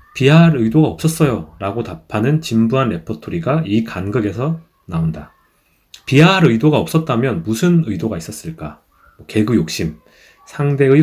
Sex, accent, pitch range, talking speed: male, Korean, 100-155 Hz, 105 wpm